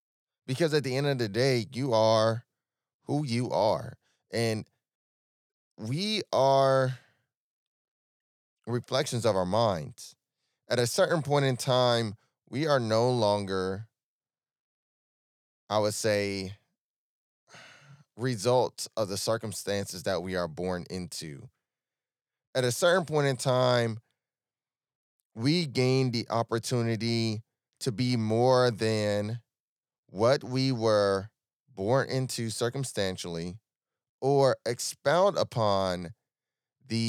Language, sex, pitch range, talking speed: English, male, 100-130 Hz, 105 wpm